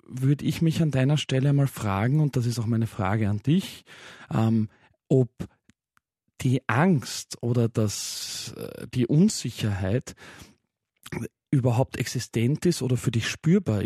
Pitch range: 120-145 Hz